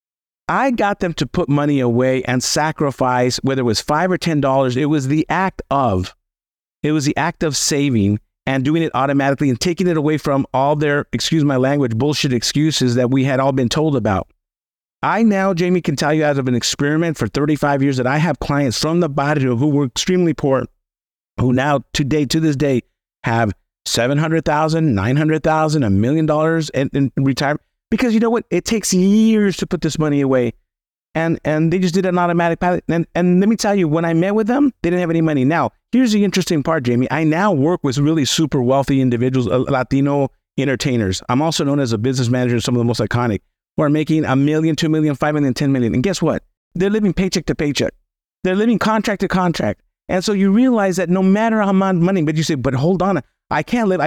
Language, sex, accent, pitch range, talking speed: English, male, American, 130-175 Hz, 220 wpm